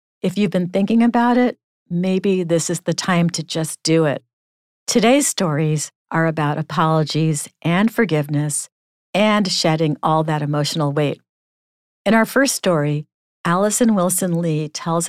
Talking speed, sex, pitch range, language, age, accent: 145 wpm, female, 155-195 Hz, English, 50-69, American